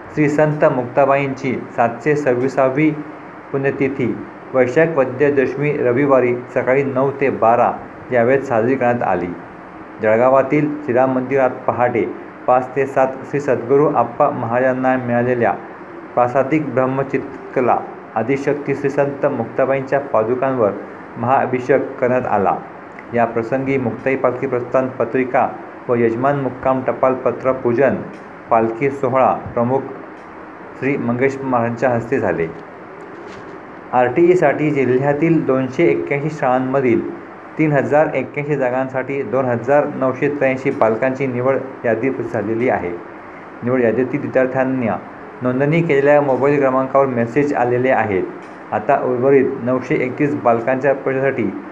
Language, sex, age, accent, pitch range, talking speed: Marathi, male, 50-69, native, 120-140 Hz, 95 wpm